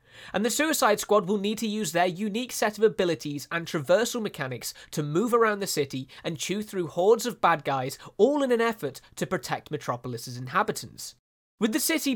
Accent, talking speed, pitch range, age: British, 195 wpm, 150-215 Hz, 20-39